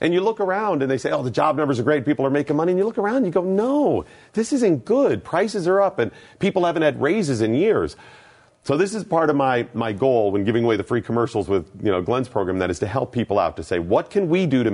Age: 40-59